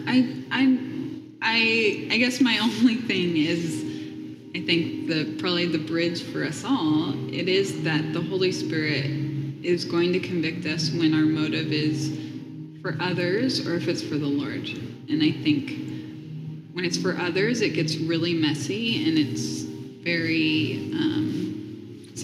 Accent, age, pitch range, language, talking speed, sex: American, 20-39, 150-180 Hz, English, 150 wpm, female